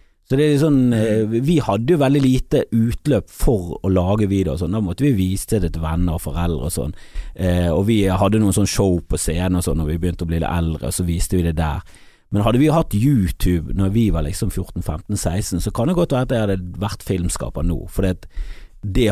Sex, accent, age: male, Swedish, 30-49